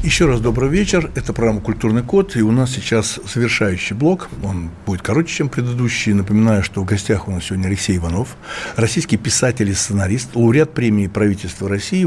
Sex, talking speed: male, 190 wpm